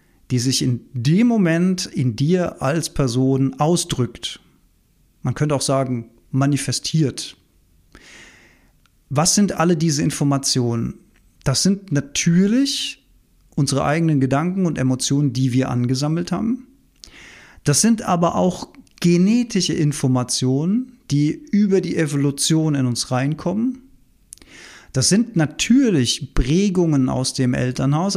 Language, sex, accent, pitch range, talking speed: German, male, German, 135-180 Hz, 110 wpm